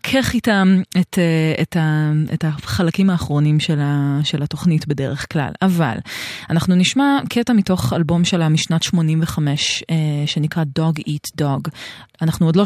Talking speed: 125 wpm